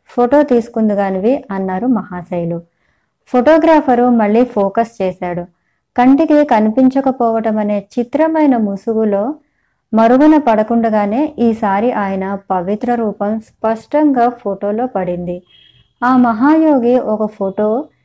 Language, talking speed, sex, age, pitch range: Telugu, 85 wpm, male, 20-39, 195-245 Hz